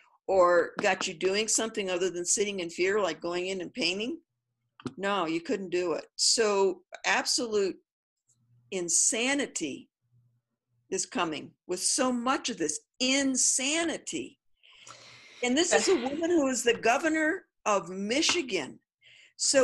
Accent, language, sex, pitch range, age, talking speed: American, English, female, 185-265 Hz, 50-69, 130 wpm